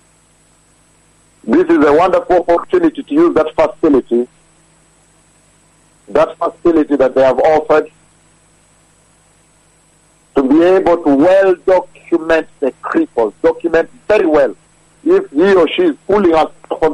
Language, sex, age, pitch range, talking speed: English, male, 50-69, 140-185 Hz, 120 wpm